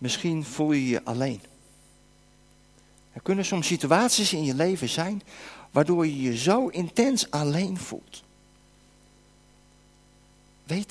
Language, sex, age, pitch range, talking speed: Dutch, male, 50-69, 165-225 Hz, 115 wpm